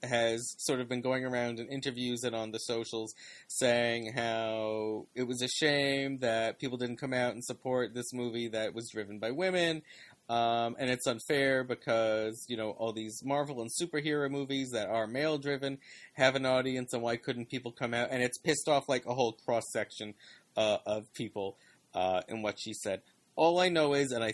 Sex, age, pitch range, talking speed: male, 30-49, 115-135 Hz, 195 wpm